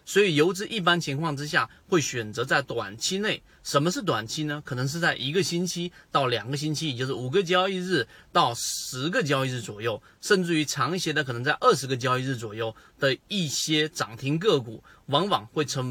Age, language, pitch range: 30-49, Chinese, 125-180 Hz